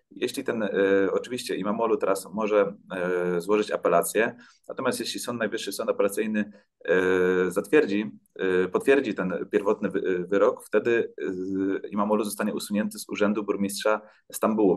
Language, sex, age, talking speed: Polish, male, 30-49, 110 wpm